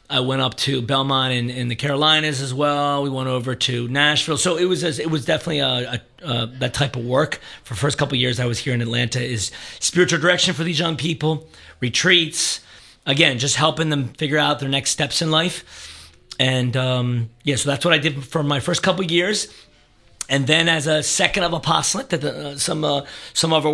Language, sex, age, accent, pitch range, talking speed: English, male, 40-59, American, 130-160 Hz, 220 wpm